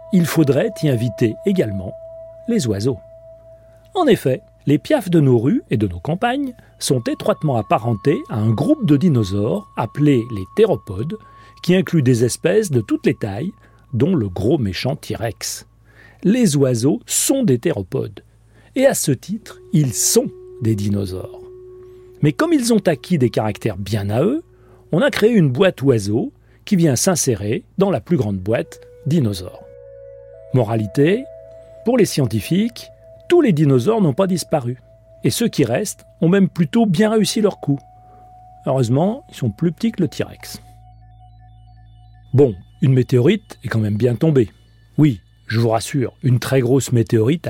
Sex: male